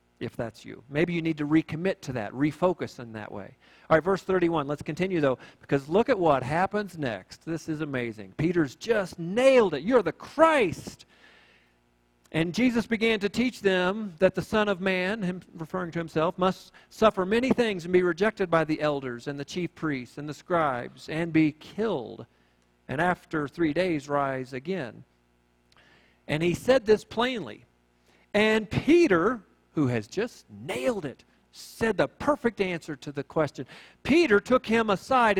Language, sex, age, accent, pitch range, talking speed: English, male, 50-69, American, 120-185 Hz, 170 wpm